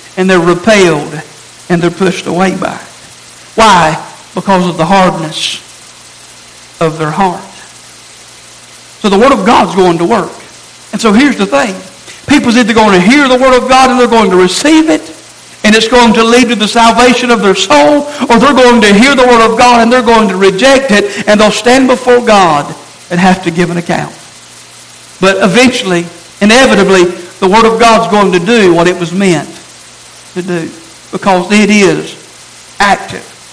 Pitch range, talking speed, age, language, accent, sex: 180-235 Hz, 185 wpm, 60-79, English, American, male